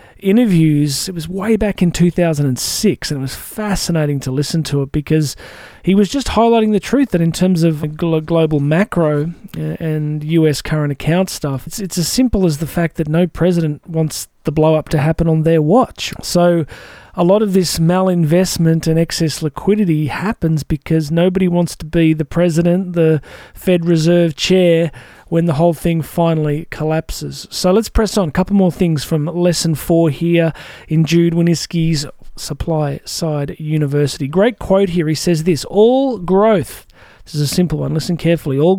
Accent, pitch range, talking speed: Australian, 150-180 Hz, 175 wpm